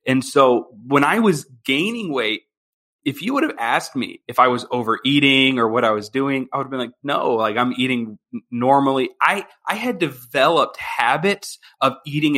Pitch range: 130-155 Hz